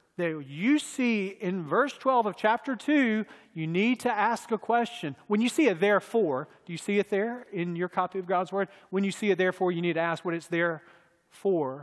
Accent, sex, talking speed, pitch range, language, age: American, male, 225 wpm, 170-230 Hz, English, 40-59